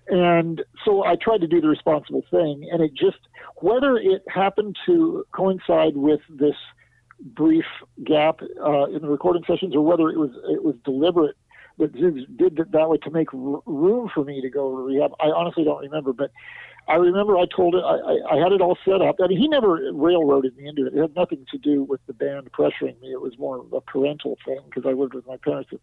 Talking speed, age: 230 wpm, 50-69